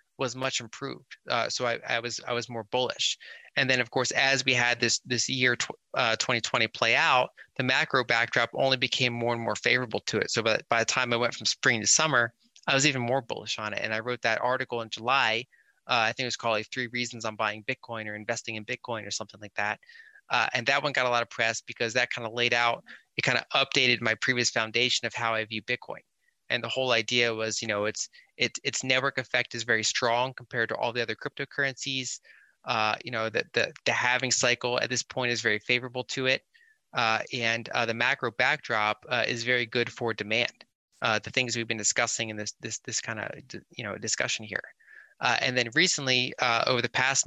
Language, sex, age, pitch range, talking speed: English, male, 30-49, 115-130 Hz, 235 wpm